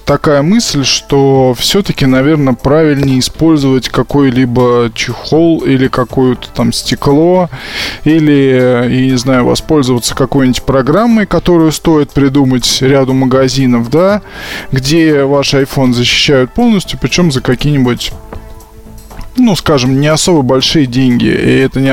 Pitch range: 125-160 Hz